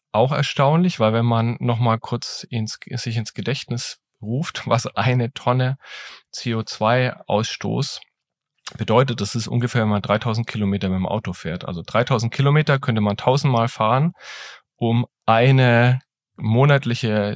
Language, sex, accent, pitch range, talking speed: German, male, German, 110-135 Hz, 135 wpm